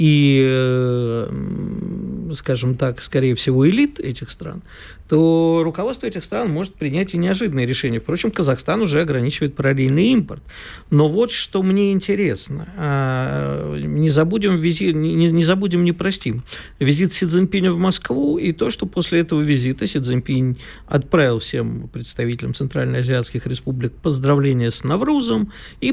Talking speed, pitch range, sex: 135 wpm, 130-175 Hz, male